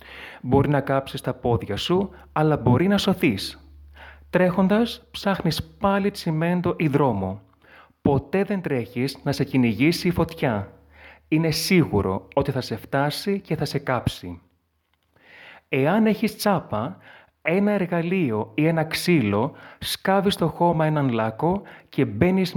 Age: 30-49